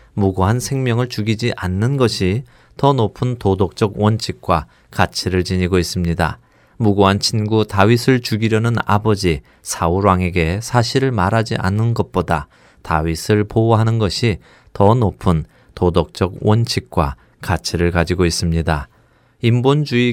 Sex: male